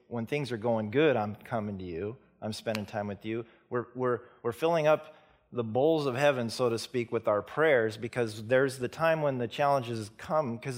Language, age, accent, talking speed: English, 40-59, American, 210 wpm